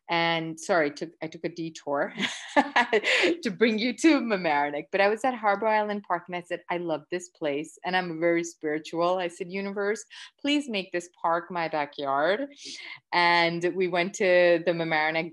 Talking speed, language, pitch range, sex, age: 170 wpm, English, 150-185 Hz, female, 30-49